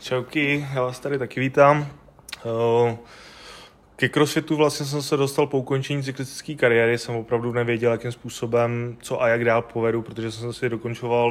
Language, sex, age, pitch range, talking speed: Czech, male, 20-39, 115-125 Hz, 160 wpm